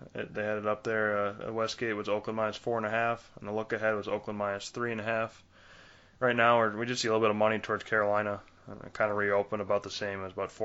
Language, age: English, 20-39